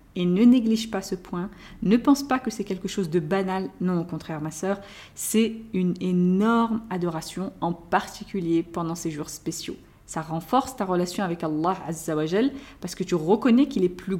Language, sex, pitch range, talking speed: French, female, 175-230 Hz, 180 wpm